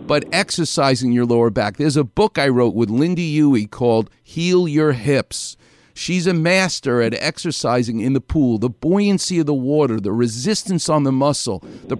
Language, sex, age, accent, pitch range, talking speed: English, male, 50-69, American, 125-190 Hz, 180 wpm